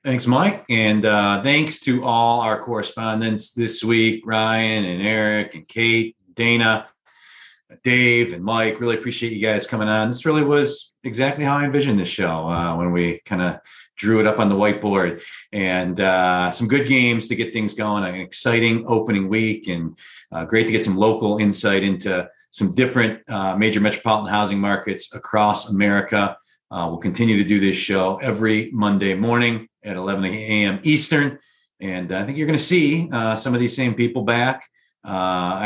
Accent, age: American, 40-59